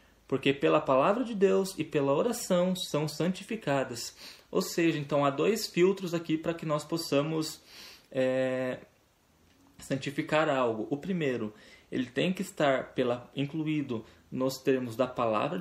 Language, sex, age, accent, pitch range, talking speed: Portuguese, male, 20-39, Brazilian, 130-160 Hz, 130 wpm